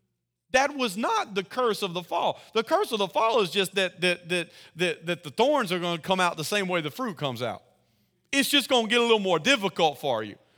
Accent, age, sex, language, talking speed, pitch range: American, 40-59, male, English, 255 wpm, 190-270 Hz